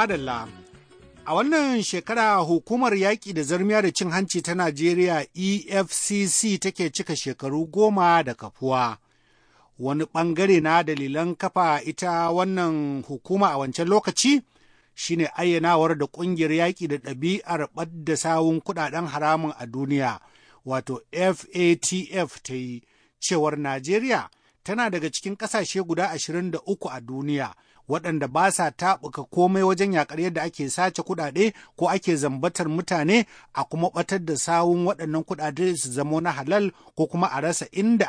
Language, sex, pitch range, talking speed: English, male, 145-190 Hz, 135 wpm